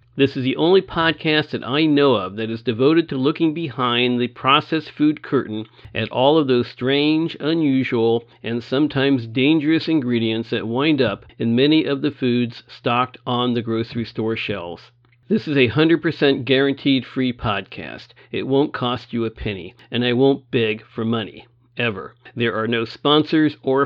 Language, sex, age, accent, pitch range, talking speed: English, male, 50-69, American, 115-145 Hz, 170 wpm